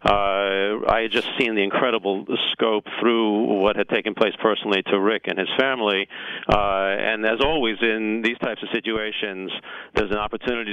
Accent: American